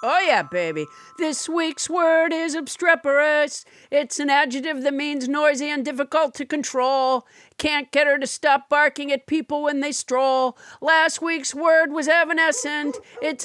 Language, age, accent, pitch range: English, 50-69, American, 275-305 Hz